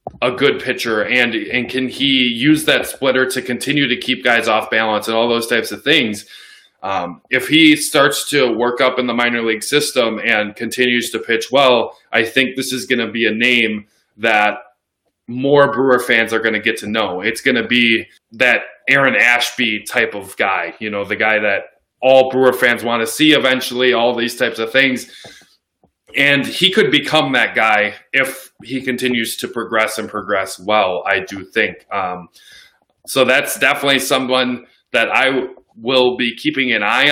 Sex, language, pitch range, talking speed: male, English, 115-130 Hz, 185 wpm